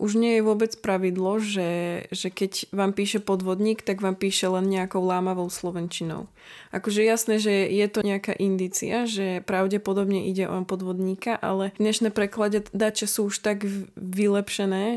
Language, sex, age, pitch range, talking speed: Slovak, female, 20-39, 190-205 Hz, 150 wpm